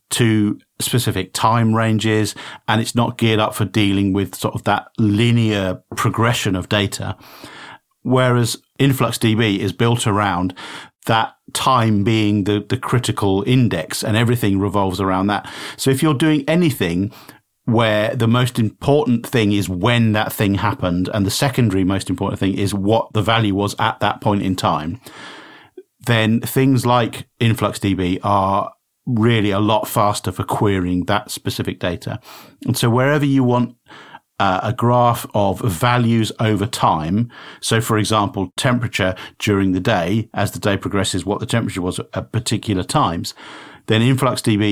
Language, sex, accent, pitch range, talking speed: English, male, British, 100-120 Hz, 150 wpm